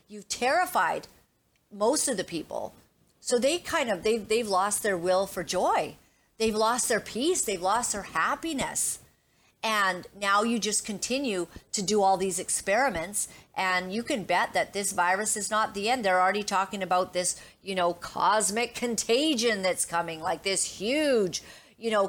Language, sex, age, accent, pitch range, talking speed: English, female, 50-69, American, 175-220 Hz, 170 wpm